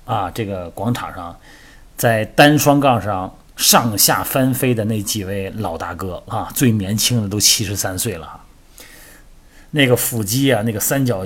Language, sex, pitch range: Chinese, male, 100-125 Hz